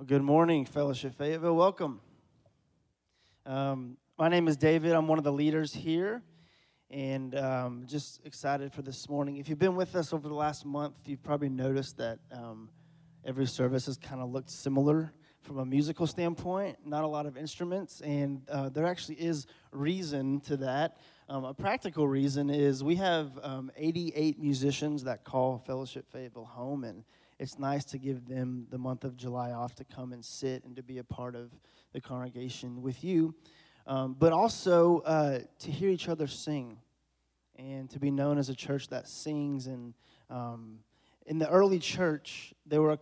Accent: American